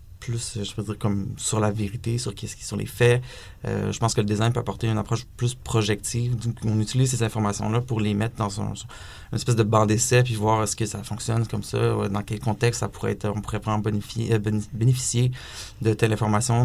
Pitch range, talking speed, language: 105-120 Hz, 225 wpm, French